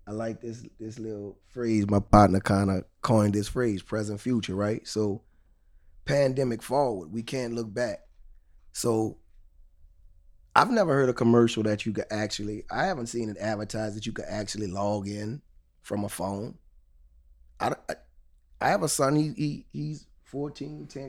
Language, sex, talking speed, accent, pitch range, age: English, male, 160 wpm, American, 90-130 Hz, 20-39